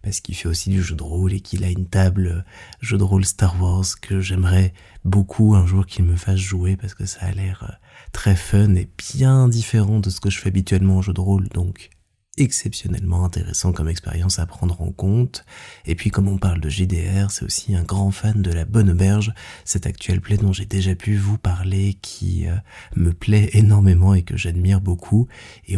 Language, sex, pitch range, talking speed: French, male, 90-105 Hz, 210 wpm